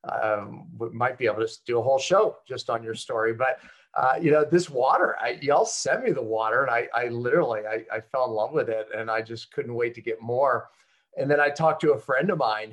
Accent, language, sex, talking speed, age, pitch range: American, English, male, 250 wpm, 40-59, 115-145 Hz